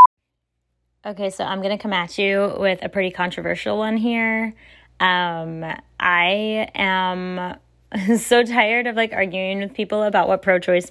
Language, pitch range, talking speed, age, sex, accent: English, 180-220 Hz, 150 wpm, 10-29, female, American